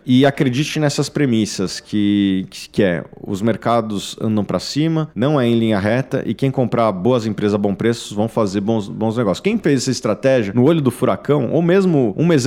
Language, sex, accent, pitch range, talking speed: Portuguese, male, Brazilian, 110-145 Hz, 200 wpm